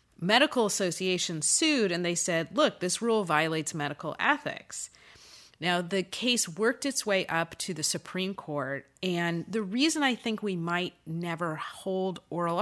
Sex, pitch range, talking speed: female, 155-200 Hz, 155 wpm